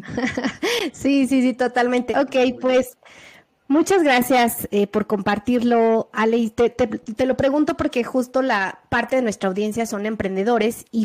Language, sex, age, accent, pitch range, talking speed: Spanish, female, 30-49, Mexican, 205-250 Hz, 160 wpm